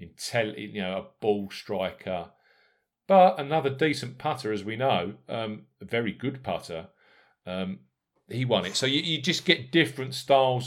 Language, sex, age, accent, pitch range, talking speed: English, male, 40-59, British, 100-150 Hz, 155 wpm